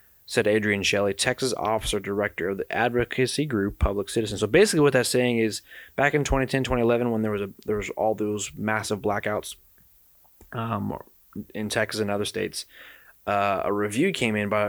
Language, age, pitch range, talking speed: English, 20-39, 105-130 Hz, 180 wpm